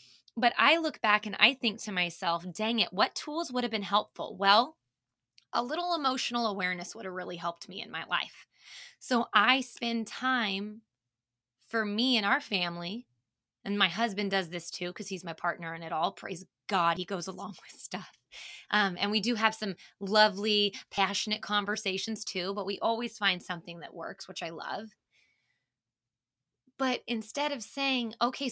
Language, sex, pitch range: English, female, 180-240 Hz